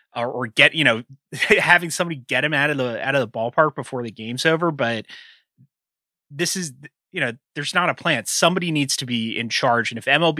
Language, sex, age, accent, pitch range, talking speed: English, male, 30-49, American, 120-155 Hz, 215 wpm